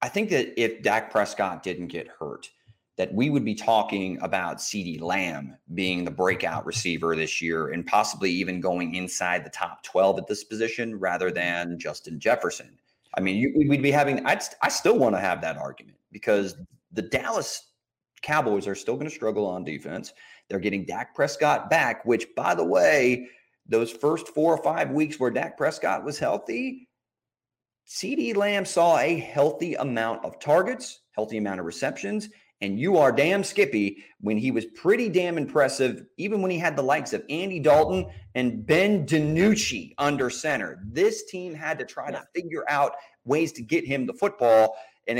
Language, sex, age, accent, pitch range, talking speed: English, male, 30-49, American, 100-155 Hz, 175 wpm